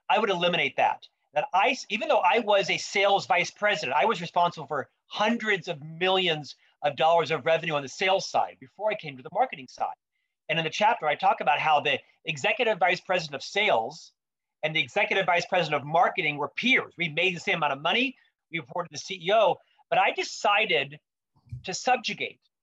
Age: 40-59